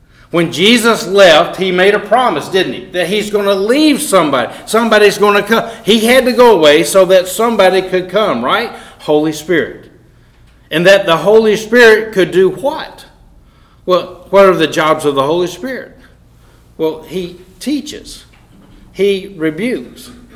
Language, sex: English, male